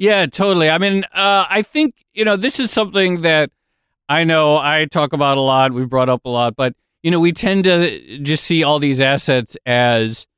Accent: American